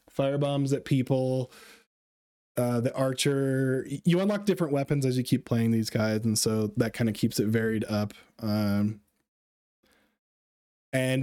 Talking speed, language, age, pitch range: 145 wpm, English, 20-39, 115-145 Hz